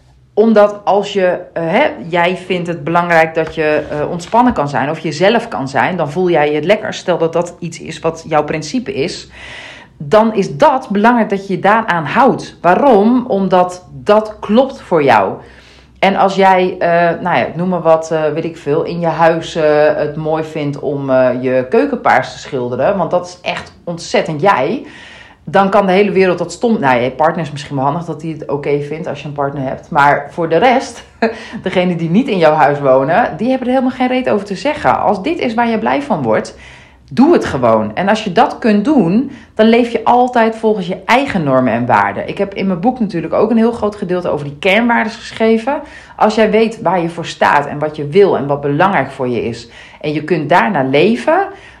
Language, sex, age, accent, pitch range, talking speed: Dutch, female, 40-59, Dutch, 155-220 Hz, 220 wpm